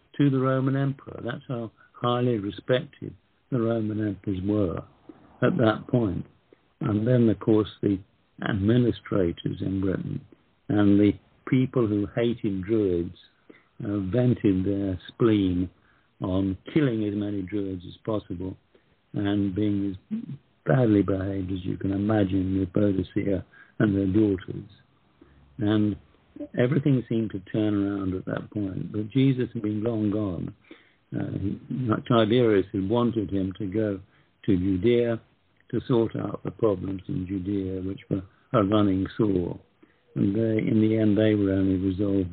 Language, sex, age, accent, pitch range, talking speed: English, male, 60-79, British, 95-120 Hz, 140 wpm